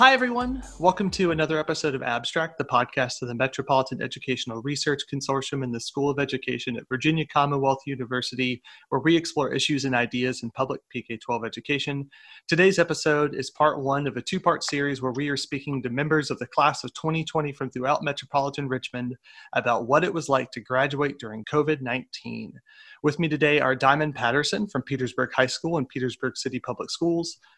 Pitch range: 125-150 Hz